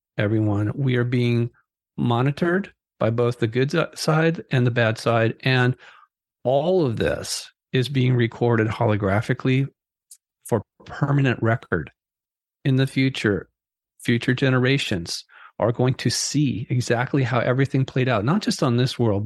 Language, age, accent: English, 40-59, American